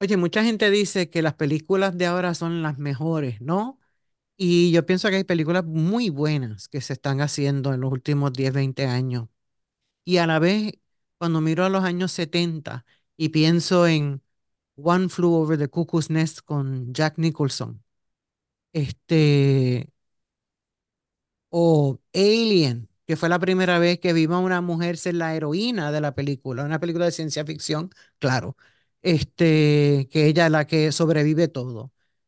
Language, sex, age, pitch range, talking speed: English, male, 50-69, 140-185 Hz, 155 wpm